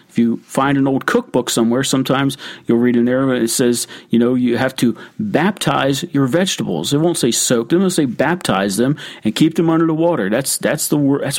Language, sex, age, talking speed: English, male, 50-69, 215 wpm